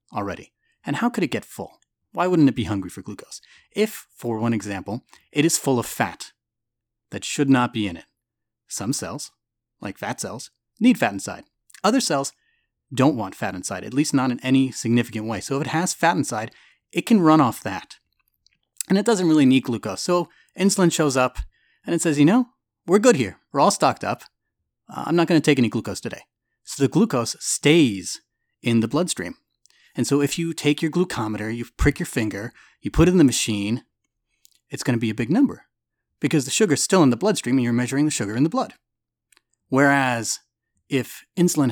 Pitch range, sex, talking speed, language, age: 115-160 Hz, male, 205 wpm, English, 30-49